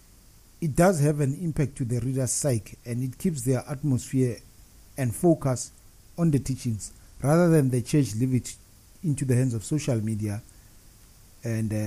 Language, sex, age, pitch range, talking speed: English, male, 50-69, 100-130 Hz, 160 wpm